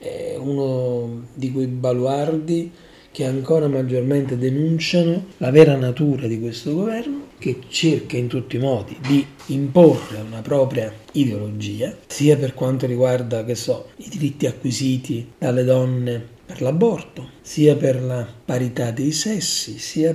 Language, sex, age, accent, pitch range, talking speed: Italian, male, 40-59, native, 115-145 Hz, 135 wpm